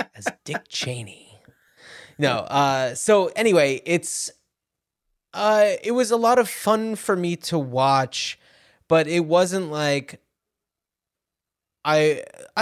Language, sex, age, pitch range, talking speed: English, male, 20-39, 120-165 Hz, 115 wpm